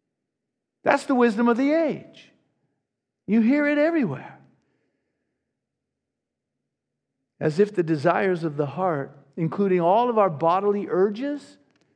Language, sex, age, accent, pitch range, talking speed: English, male, 50-69, American, 155-235 Hz, 115 wpm